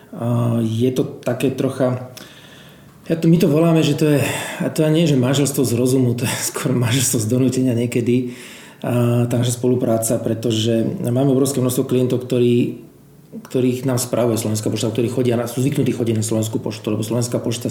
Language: Slovak